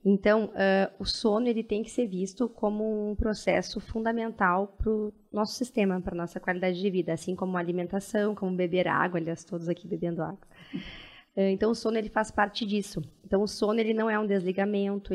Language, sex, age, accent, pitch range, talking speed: Portuguese, female, 20-39, Brazilian, 190-220 Hz, 195 wpm